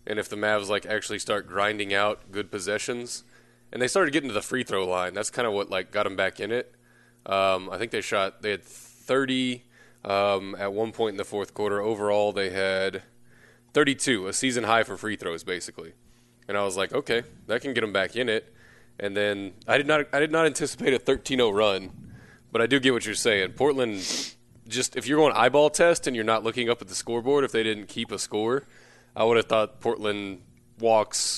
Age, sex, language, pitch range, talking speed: 20-39, male, English, 100-120 Hz, 225 wpm